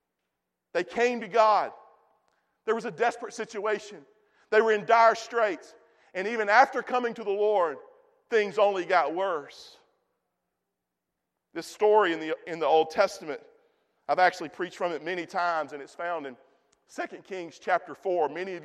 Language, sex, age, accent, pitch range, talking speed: English, male, 40-59, American, 175-225 Hz, 160 wpm